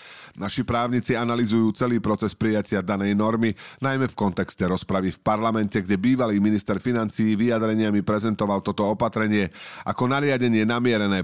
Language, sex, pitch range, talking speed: Slovak, male, 100-120 Hz, 135 wpm